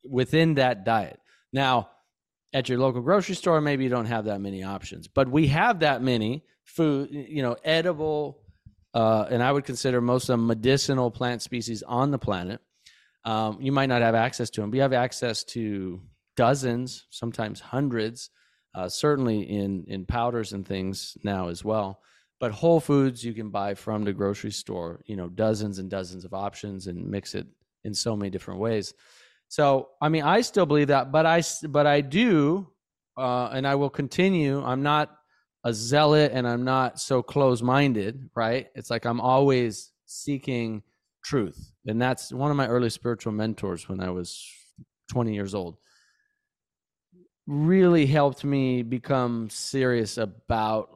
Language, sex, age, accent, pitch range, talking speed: English, male, 30-49, American, 105-140 Hz, 165 wpm